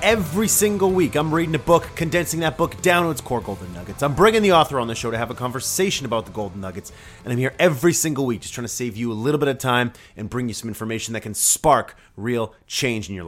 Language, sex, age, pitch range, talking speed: English, male, 30-49, 110-150 Hz, 265 wpm